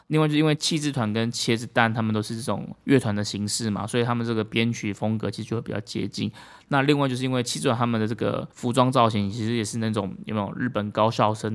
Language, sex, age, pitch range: Chinese, male, 20-39, 105-130 Hz